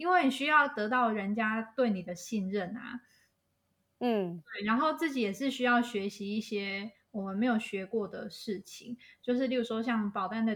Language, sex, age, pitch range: Chinese, female, 20-39, 200-245 Hz